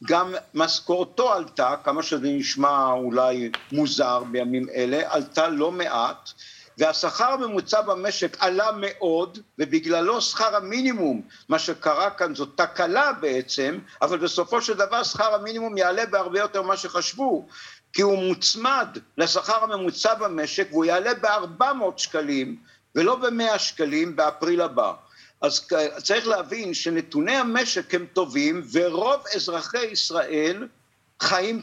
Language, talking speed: Hebrew, 120 wpm